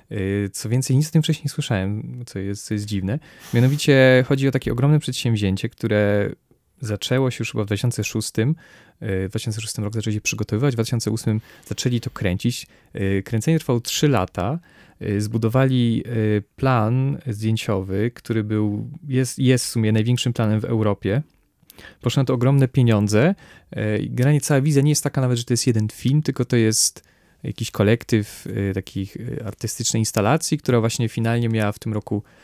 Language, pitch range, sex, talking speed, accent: Polish, 100-130 Hz, male, 160 wpm, native